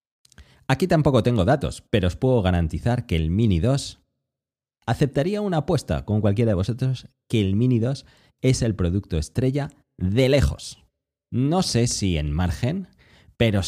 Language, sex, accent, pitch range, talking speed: Spanish, male, Spanish, 85-115 Hz, 155 wpm